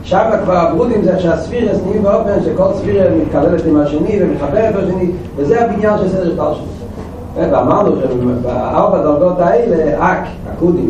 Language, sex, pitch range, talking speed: Hebrew, male, 125-170 Hz, 145 wpm